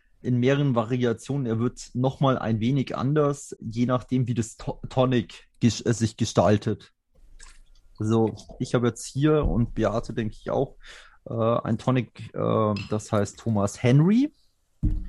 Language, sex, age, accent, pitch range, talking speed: German, male, 30-49, German, 110-135 Hz, 145 wpm